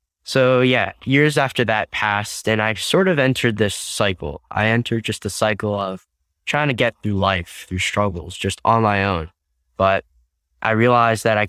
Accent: American